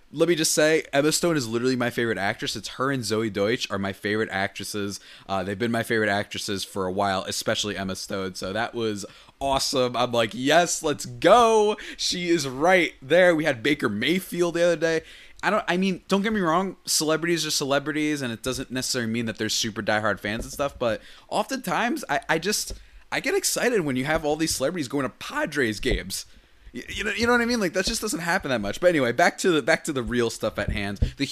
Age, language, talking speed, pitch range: 20-39, English, 230 wpm, 110-160 Hz